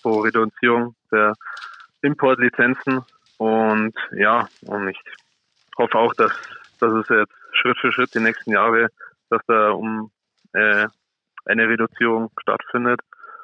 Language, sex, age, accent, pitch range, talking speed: German, male, 20-39, German, 110-120 Hz, 115 wpm